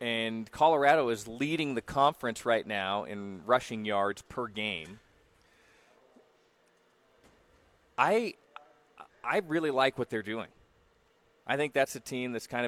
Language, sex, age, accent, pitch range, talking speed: English, male, 30-49, American, 110-130 Hz, 130 wpm